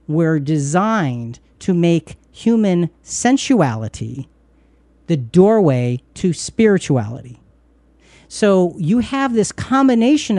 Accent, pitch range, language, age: American, 145-210 Hz, English, 50-69